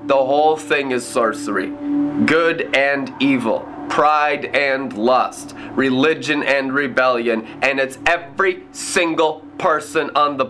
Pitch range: 125-205 Hz